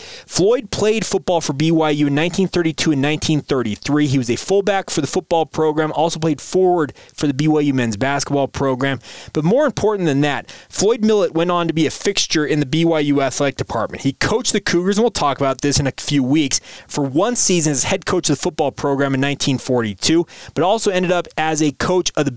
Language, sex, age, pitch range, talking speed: English, male, 20-39, 140-165 Hz, 210 wpm